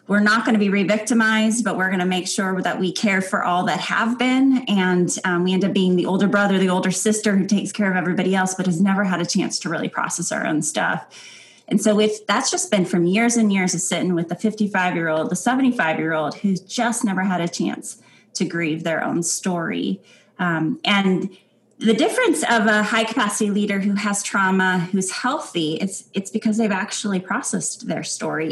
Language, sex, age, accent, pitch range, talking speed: English, female, 20-39, American, 180-215 Hz, 210 wpm